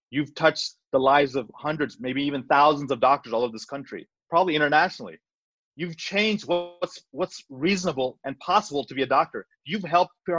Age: 30-49